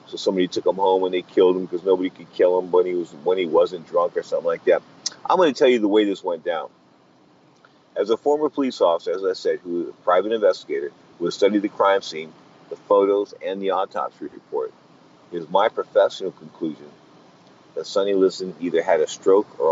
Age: 50-69